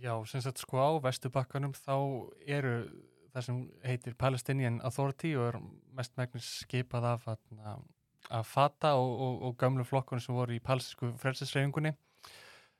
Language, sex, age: English, male, 20-39